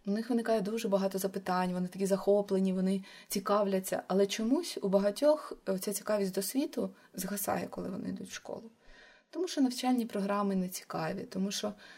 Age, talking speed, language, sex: 20-39, 165 wpm, Ukrainian, female